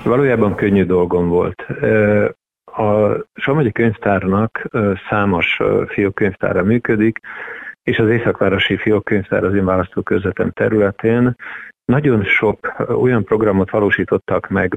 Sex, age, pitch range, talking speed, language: male, 50-69, 95-110 Hz, 100 wpm, Hungarian